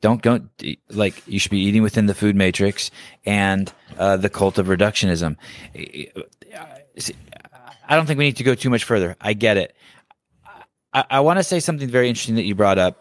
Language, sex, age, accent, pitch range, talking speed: English, male, 20-39, American, 90-105 Hz, 195 wpm